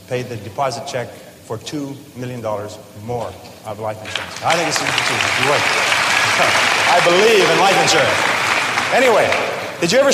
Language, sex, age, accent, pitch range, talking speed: English, male, 30-49, American, 125-155 Hz, 155 wpm